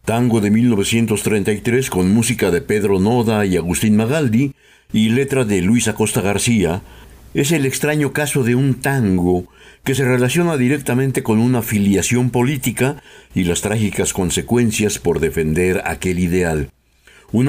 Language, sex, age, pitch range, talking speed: Spanish, male, 60-79, 90-125 Hz, 140 wpm